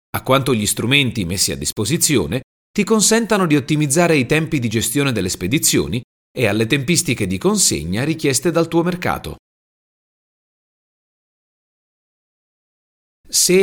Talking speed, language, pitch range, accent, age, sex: 120 wpm, Italian, 100-160 Hz, native, 30-49, male